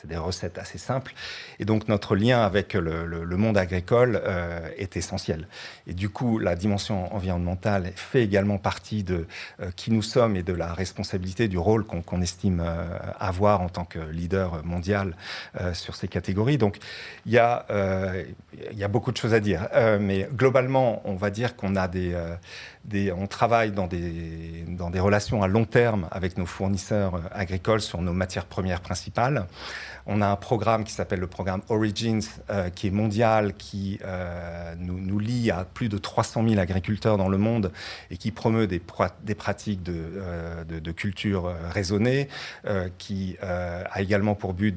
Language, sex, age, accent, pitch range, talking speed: French, male, 40-59, French, 90-105 Hz, 190 wpm